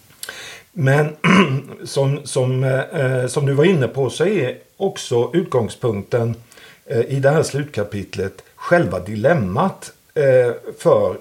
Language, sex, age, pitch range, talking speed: Swedish, male, 50-69, 115-160 Hz, 95 wpm